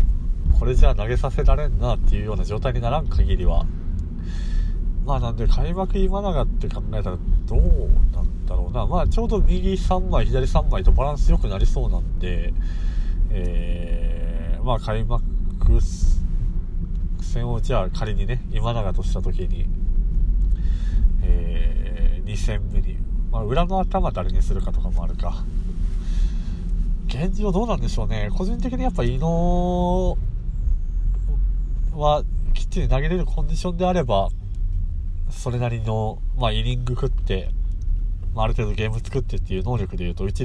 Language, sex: Japanese, male